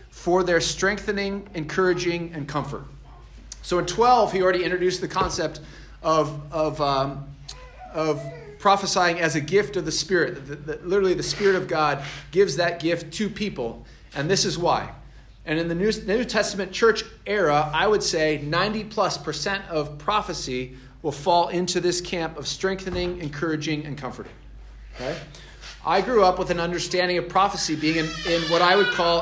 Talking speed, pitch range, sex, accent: 160 wpm, 145-185 Hz, male, American